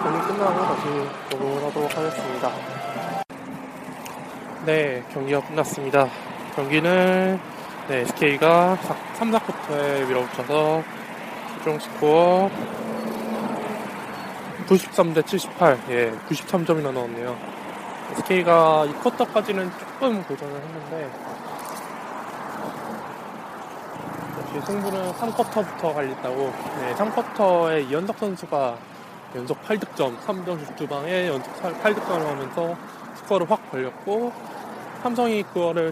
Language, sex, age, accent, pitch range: Korean, male, 20-39, native, 145-195 Hz